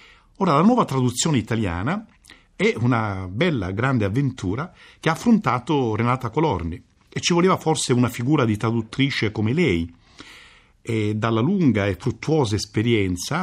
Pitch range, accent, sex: 115-165 Hz, native, male